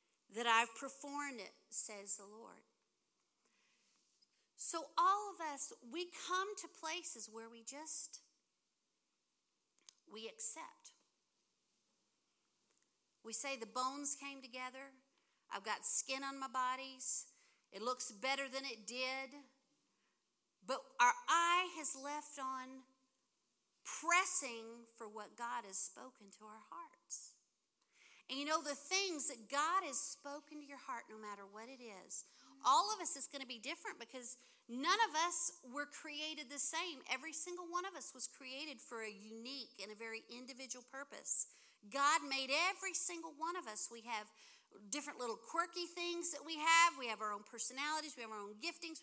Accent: American